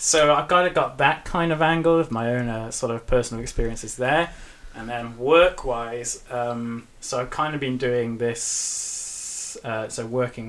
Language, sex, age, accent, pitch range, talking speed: English, male, 20-39, British, 115-145 Hz, 185 wpm